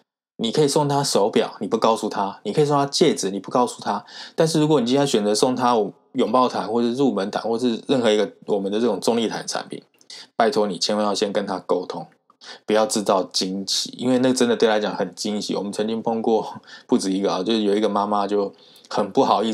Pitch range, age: 100-115 Hz, 20-39